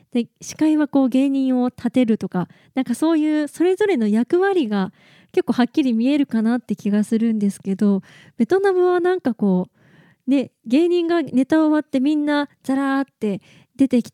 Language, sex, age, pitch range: Japanese, female, 20-39, 210-300 Hz